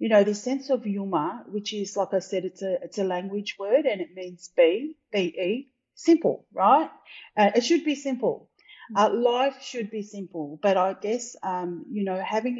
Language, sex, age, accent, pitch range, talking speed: English, female, 40-59, Australian, 185-230 Hz, 195 wpm